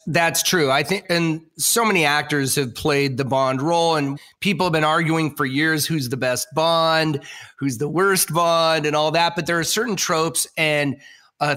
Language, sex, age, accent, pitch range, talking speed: English, male, 30-49, American, 150-175 Hz, 195 wpm